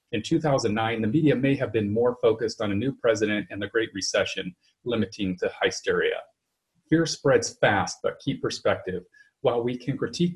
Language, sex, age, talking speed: English, male, 40-59, 175 wpm